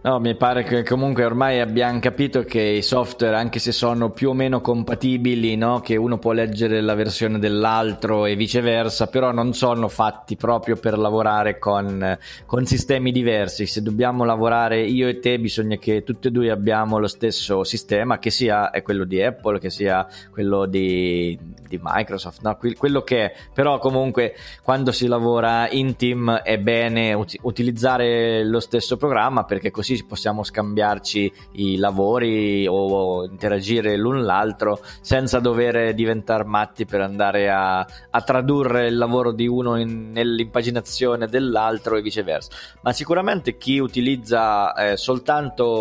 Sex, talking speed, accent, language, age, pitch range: male, 155 wpm, native, Italian, 20-39, 105-125 Hz